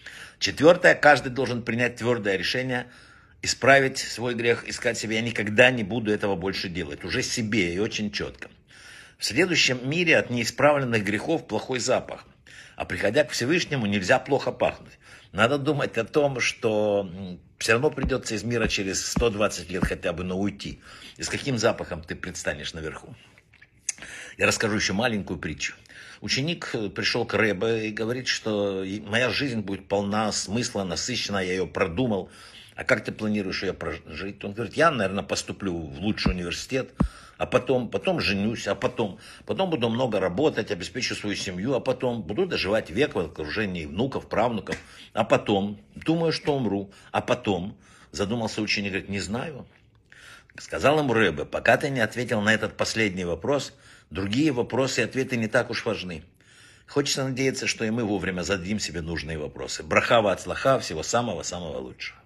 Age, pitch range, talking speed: 60-79, 100-125 Hz, 160 wpm